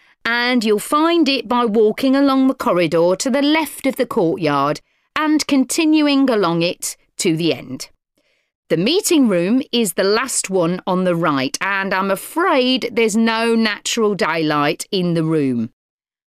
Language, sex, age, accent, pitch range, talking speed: English, female, 40-59, British, 185-275 Hz, 155 wpm